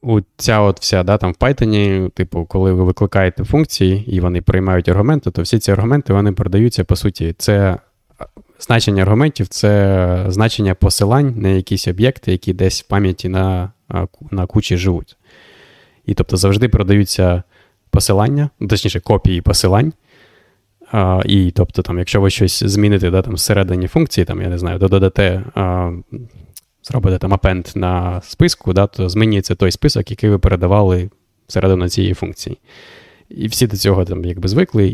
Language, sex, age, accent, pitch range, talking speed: Ukrainian, male, 20-39, native, 95-110 Hz, 155 wpm